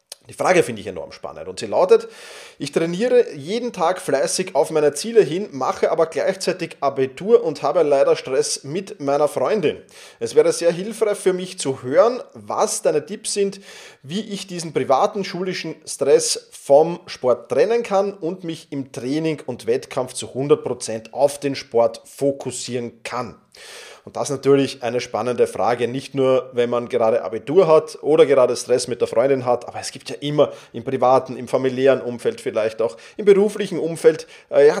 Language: German